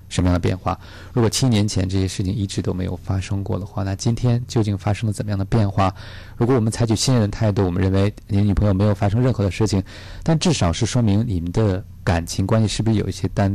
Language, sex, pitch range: Chinese, male, 95-115 Hz